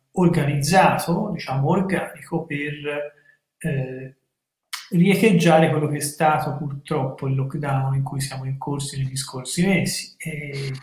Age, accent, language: 40-59, native, Italian